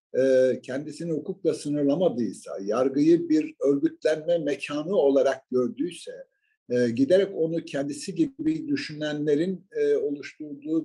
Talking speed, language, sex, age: 85 wpm, Turkish, male, 60-79